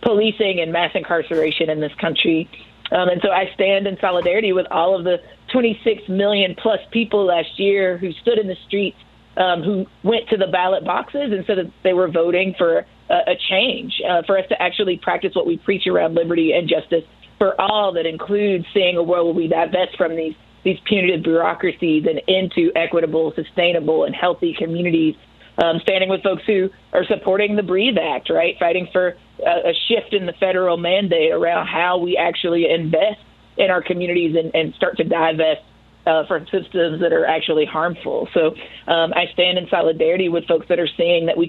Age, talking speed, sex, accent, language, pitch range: 30-49, 195 wpm, female, American, English, 165-195 Hz